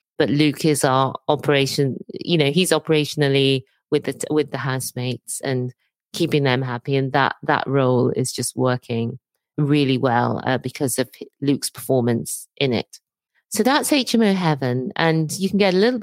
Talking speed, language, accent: 165 wpm, English, British